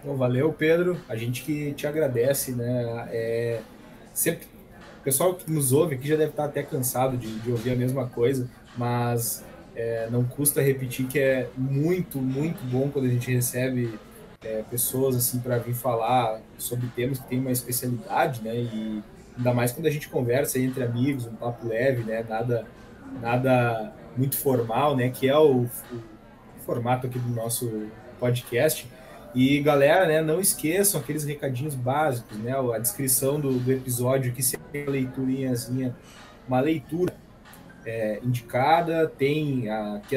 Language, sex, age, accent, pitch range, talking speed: Portuguese, male, 20-39, Brazilian, 120-135 Hz, 155 wpm